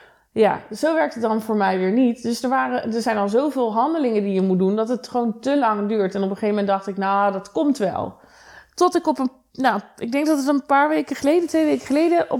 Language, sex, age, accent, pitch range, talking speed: Dutch, female, 20-39, Dutch, 215-285 Hz, 260 wpm